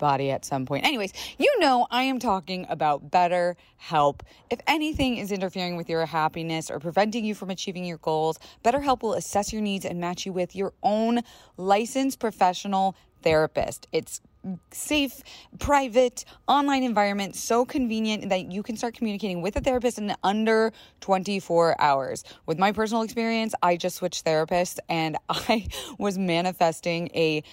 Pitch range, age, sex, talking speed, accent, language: 165-225 Hz, 20-39, female, 155 wpm, American, English